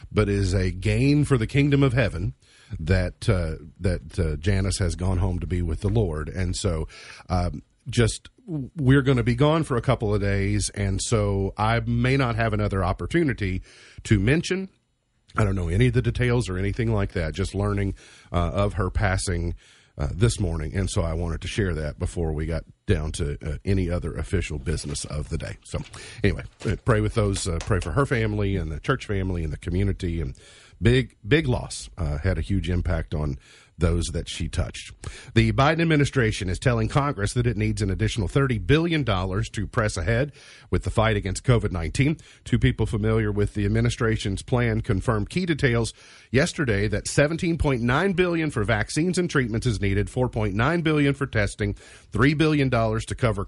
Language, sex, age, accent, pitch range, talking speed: English, male, 40-59, American, 95-125 Hz, 185 wpm